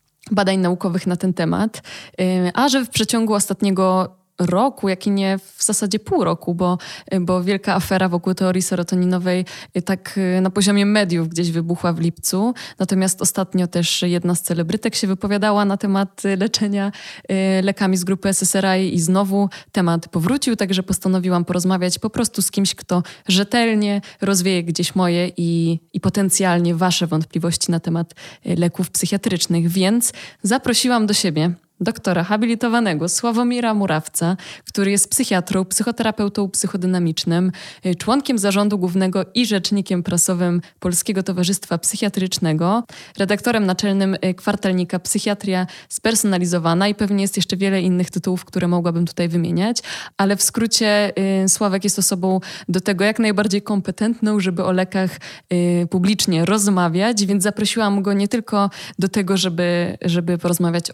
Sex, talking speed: female, 135 wpm